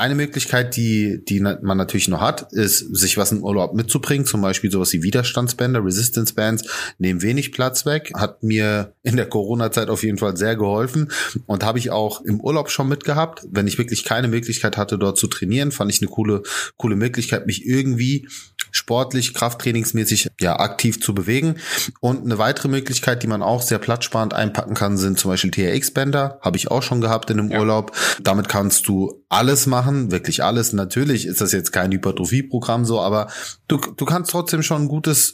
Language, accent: German, German